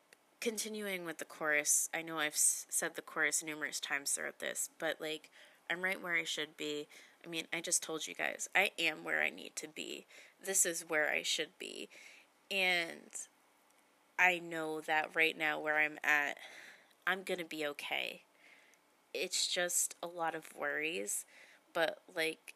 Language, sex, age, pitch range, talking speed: English, female, 20-39, 155-175 Hz, 170 wpm